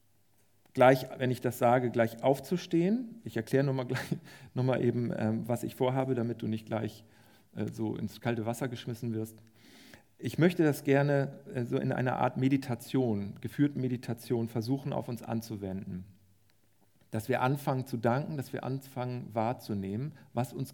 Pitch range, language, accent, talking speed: 105-135 Hz, German, German, 150 wpm